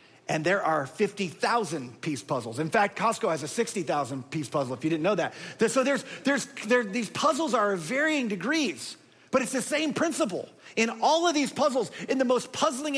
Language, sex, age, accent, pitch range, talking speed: English, male, 40-59, American, 180-240 Hz, 185 wpm